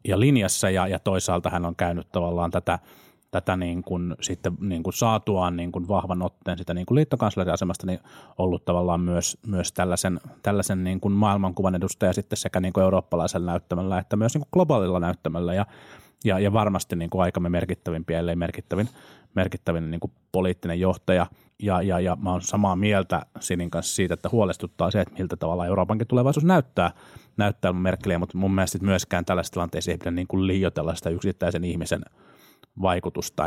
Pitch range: 85-100 Hz